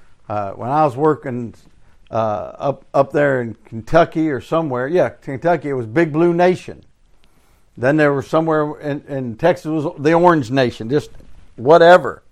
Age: 60-79